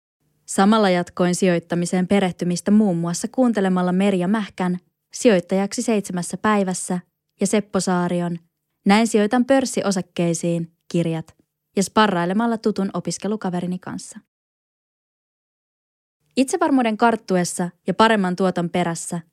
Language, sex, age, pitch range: Finnish, female, 20-39, 175-215 Hz